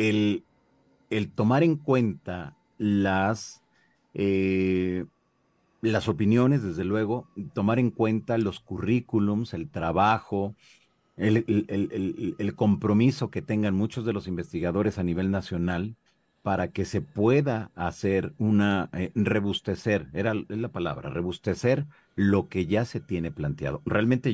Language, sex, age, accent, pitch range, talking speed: Spanish, male, 40-59, Mexican, 85-110 Hz, 130 wpm